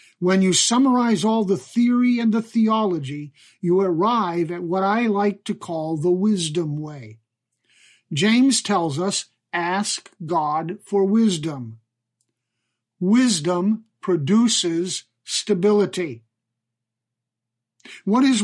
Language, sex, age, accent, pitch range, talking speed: English, male, 50-69, American, 130-215 Hz, 105 wpm